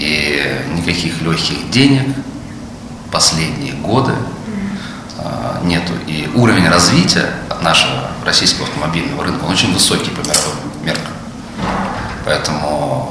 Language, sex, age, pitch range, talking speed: Russian, male, 40-59, 80-110 Hz, 100 wpm